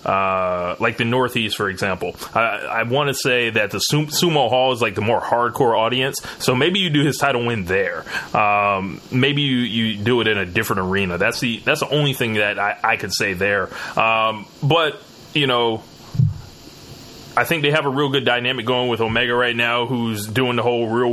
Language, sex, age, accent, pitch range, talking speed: English, male, 20-39, American, 110-135 Hz, 210 wpm